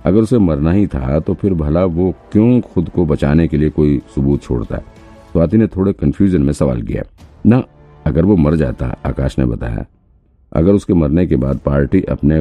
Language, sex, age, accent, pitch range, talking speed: Hindi, male, 50-69, native, 70-90 Hz, 200 wpm